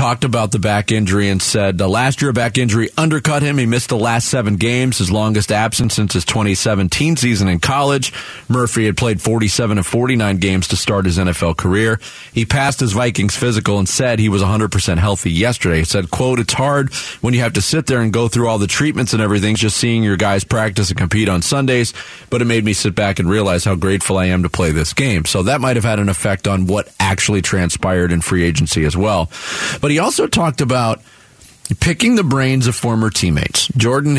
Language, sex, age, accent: English, male, 40-59, American